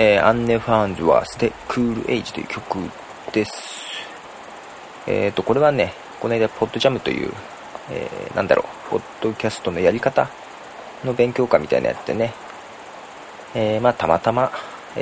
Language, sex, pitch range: Japanese, male, 110-135 Hz